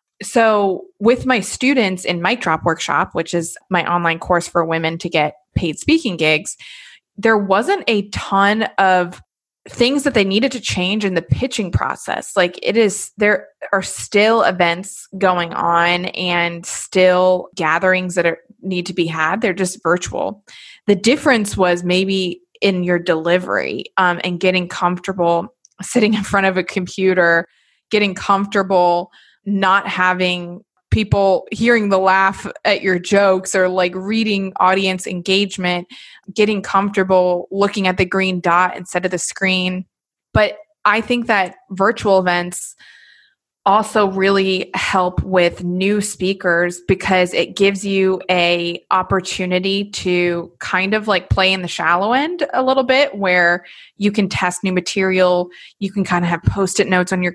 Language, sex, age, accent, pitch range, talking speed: English, female, 20-39, American, 180-205 Hz, 150 wpm